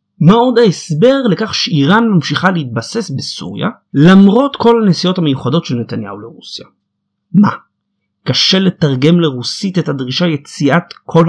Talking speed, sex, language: 120 wpm, male, Hebrew